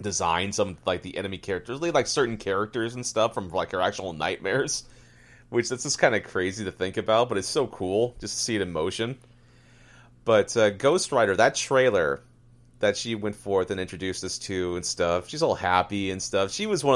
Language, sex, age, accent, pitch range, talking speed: English, male, 30-49, American, 95-120 Hz, 210 wpm